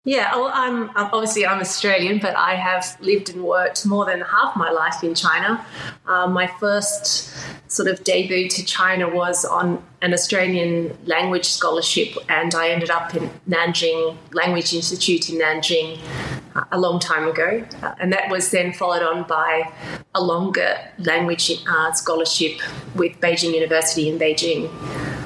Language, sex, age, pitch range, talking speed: English, female, 30-49, 165-185 Hz, 145 wpm